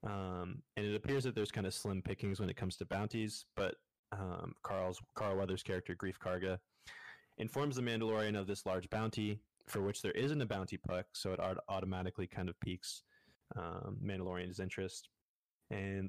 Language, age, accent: English, 20-39, American